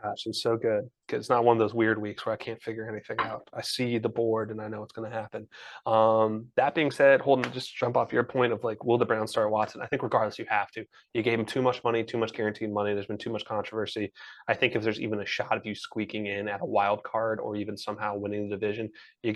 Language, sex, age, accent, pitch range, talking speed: English, male, 20-39, American, 105-120 Hz, 270 wpm